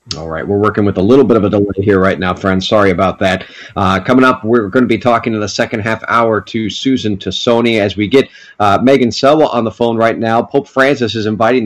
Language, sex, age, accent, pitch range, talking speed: English, male, 40-59, American, 105-125 Hz, 250 wpm